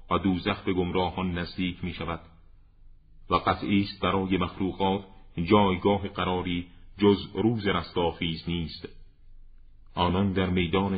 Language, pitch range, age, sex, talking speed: Persian, 90-100 Hz, 40-59, male, 110 wpm